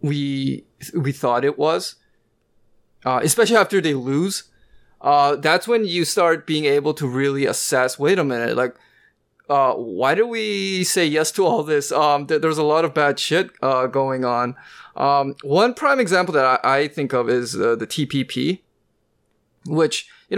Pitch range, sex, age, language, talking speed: 130-165 Hz, male, 20-39, English, 170 wpm